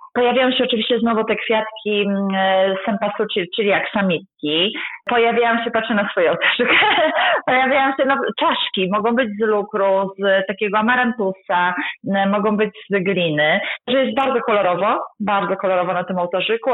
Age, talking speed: 30-49, 150 wpm